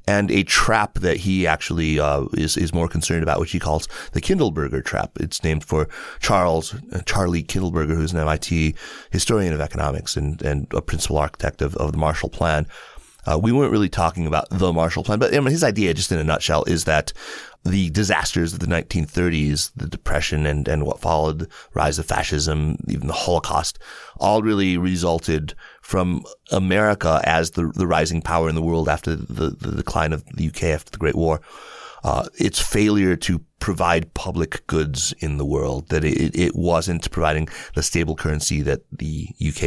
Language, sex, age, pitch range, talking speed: English, male, 30-49, 75-90 Hz, 185 wpm